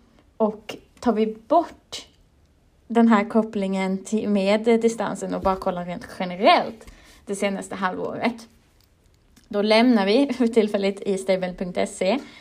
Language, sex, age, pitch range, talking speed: Swedish, female, 20-39, 190-225 Hz, 115 wpm